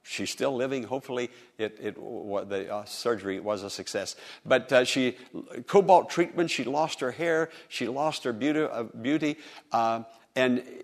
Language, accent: English, American